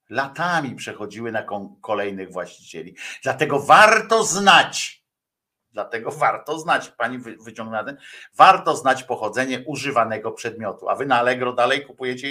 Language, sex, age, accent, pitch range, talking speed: Polish, male, 50-69, native, 140-195 Hz, 115 wpm